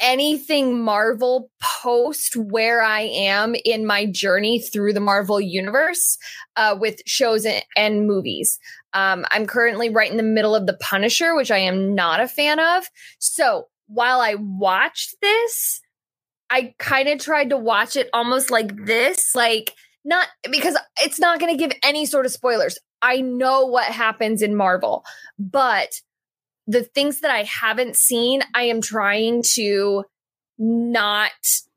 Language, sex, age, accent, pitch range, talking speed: English, female, 20-39, American, 210-275 Hz, 155 wpm